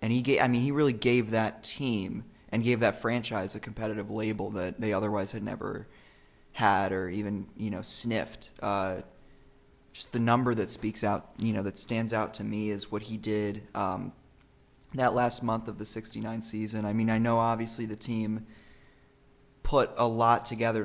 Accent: American